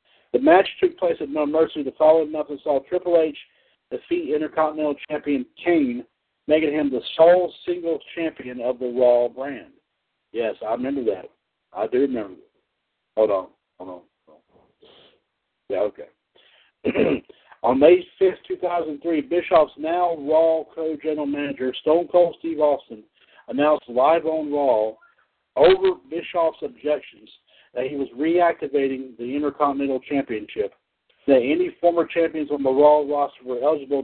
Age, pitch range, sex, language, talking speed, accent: 60-79, 140-170 Hz, male, English, 145 wpm, American